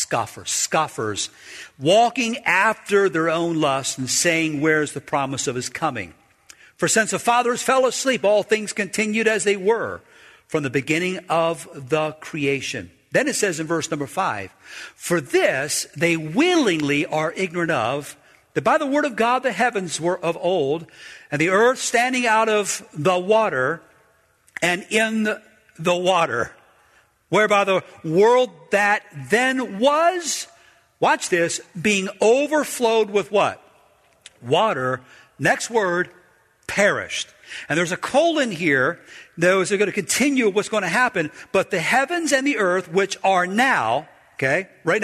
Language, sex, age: English, male, 50-69